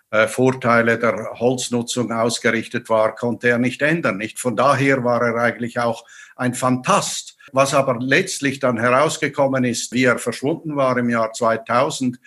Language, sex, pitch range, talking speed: German, male, 120-140 Hz, 150 wpm